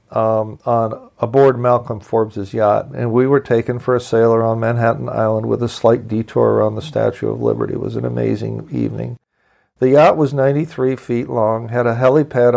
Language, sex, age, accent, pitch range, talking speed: English, male, 50-69, American, 115-140 Hz, 185 wpm